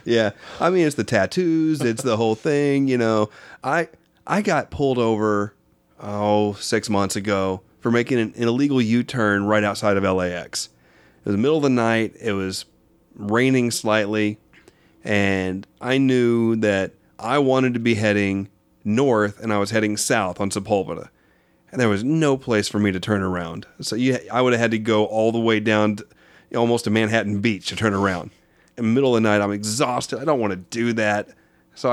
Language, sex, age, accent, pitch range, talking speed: English, male, 30-49, American, 100-120 Hz, 195 wpm